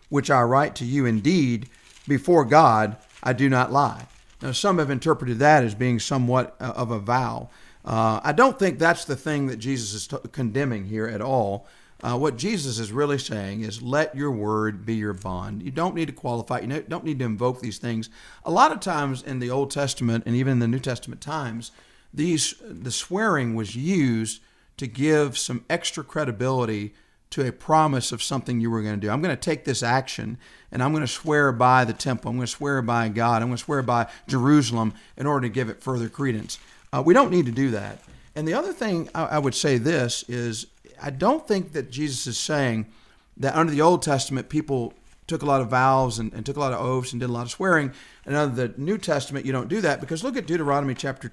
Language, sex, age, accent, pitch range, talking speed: English, male, 40-59, American, 120-145 Hz, 225 wpm